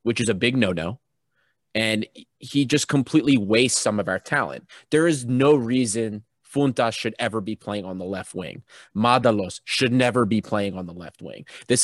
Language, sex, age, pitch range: English, male, 30-49, 125-180 Hz